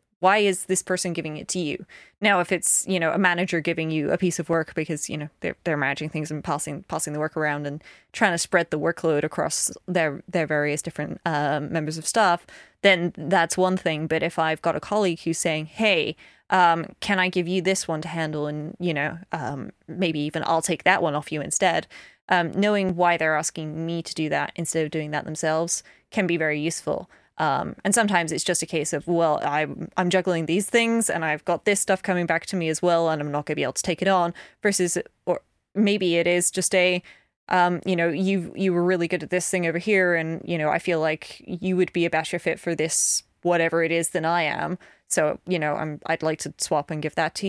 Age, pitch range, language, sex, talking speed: 20-39, 155-180 Hz, English, female, 240 wpm